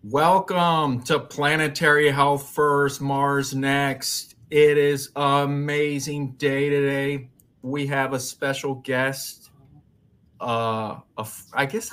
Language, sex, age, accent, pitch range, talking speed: English, male, 30-49, American, 130-160 Hz, 105 wpm